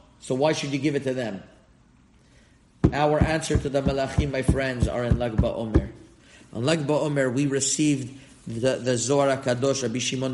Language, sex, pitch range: English, male, 130-155 Hz